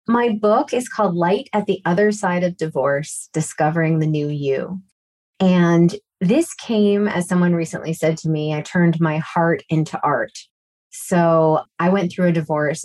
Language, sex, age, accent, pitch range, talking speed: English, female, 30-49, American, 155-185 Hz, 170 wpm